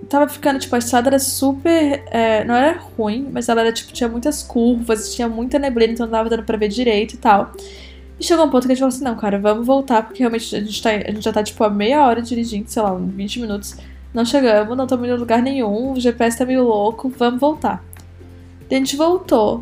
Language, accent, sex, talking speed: Portuguese, Brazilian, female, 245 wpm